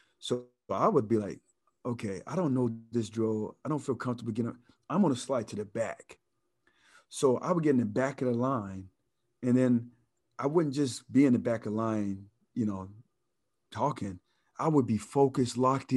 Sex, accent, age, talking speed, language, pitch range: male, American, 40-59, 195 wpm, English, 115-140 Hz